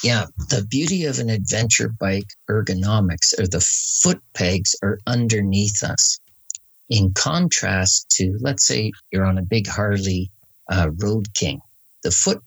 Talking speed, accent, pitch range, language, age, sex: 145 wpm, American, 95-120 Hz, English, 50-69, male